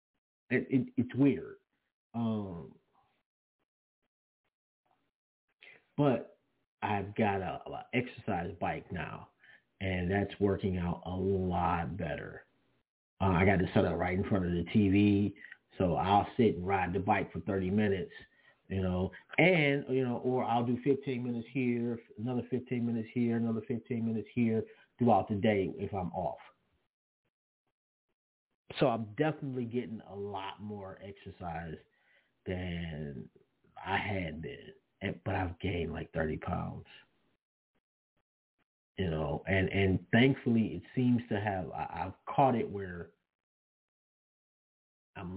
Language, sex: English, male